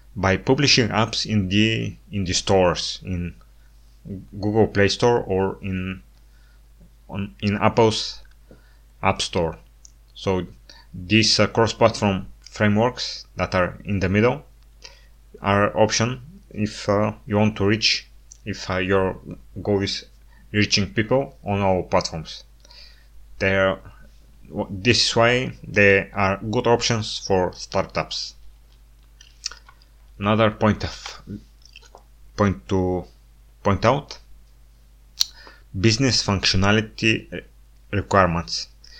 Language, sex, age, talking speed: English, male, 30-49, 100 wpm